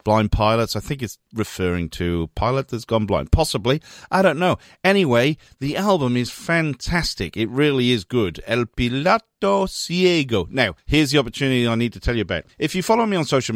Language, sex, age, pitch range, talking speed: English, male, 40-59, 95-135 Hz, 190 wpm